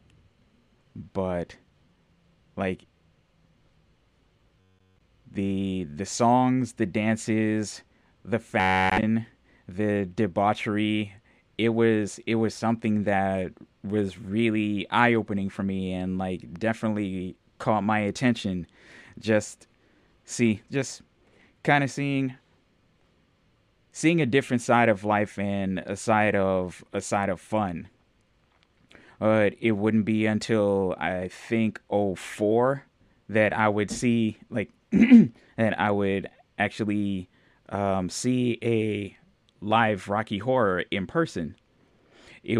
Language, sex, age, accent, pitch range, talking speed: English, male, 20-39, American, 95-115 Hz, 105 wpm